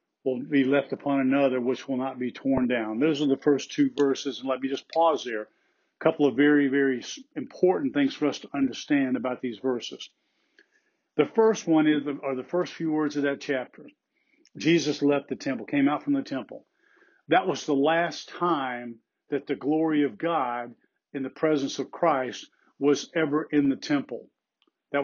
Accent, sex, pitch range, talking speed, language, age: American, male, 135-170 Hz, 185 wpm, English, 50-69